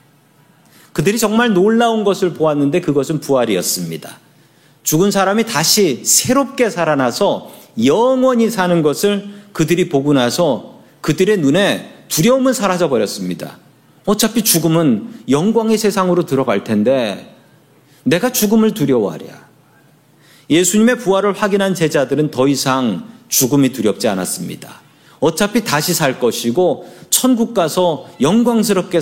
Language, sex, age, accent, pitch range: Korean, male, 40-59, native, 140-210 Hz